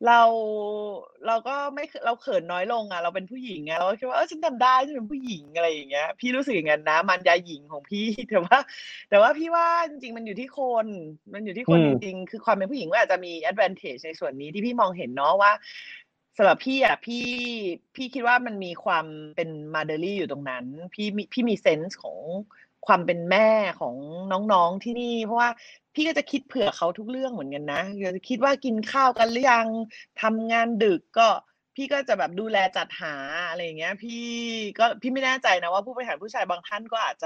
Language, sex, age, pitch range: Thai, female, 30-49, 180-245 Hz